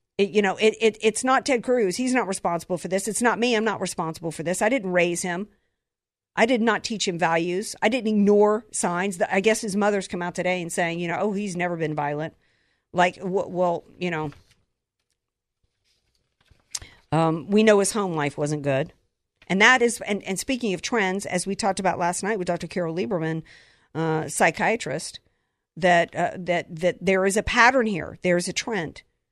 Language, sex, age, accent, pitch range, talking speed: English, female, 50-69, American, 170-215 Hz, 200 wpm